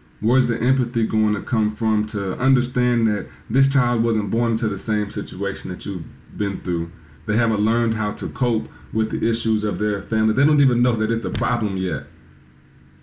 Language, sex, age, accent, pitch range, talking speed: English, male, 30-49, American, 100-115 Hz, 200 wpm